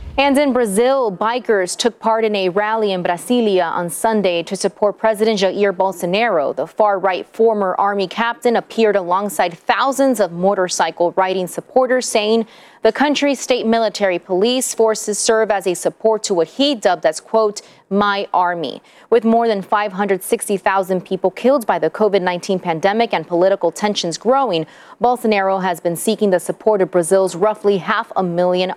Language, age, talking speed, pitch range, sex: English, 30-49, 155 wpm, 185-230 Hz, female